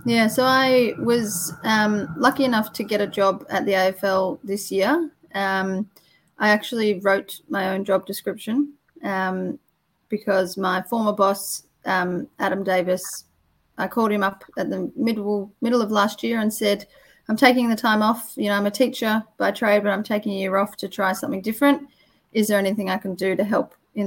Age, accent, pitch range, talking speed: 30-49, Australian, 195-225 Hz, 190 wpm